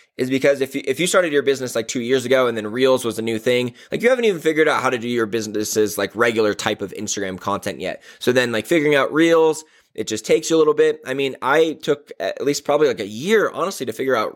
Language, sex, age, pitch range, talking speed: English, male, 20-39, 120-155 Hz, 265 wpm